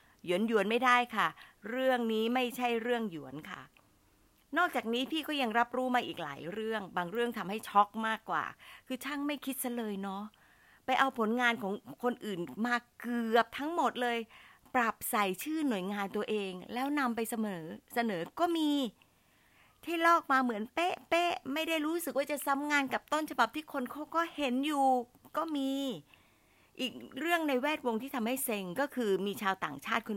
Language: Thai